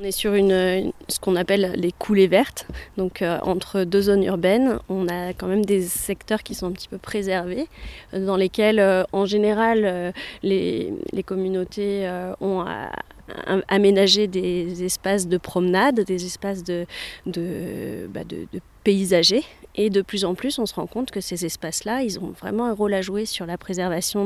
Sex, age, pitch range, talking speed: female, 20-39, 185-215 Hz, 185 wpm